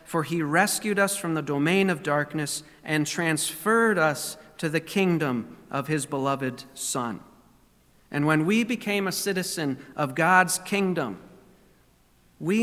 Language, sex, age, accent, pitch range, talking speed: English, male, 40-59, American, 150-190 Hz, 140 wpm